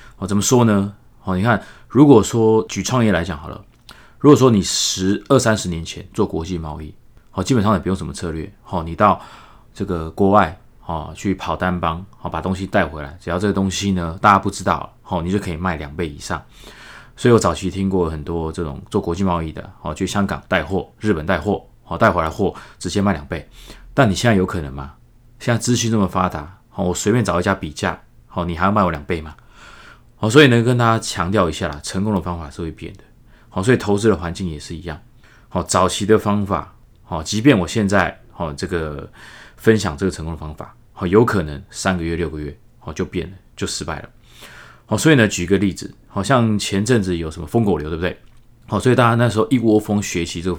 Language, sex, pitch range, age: Chinese, male, 85-110 Hz, 20-39